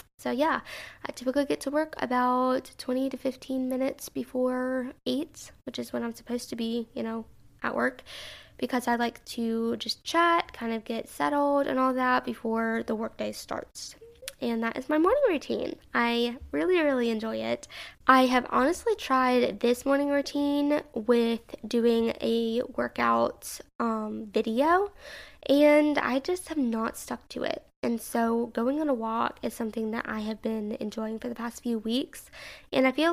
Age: 10-29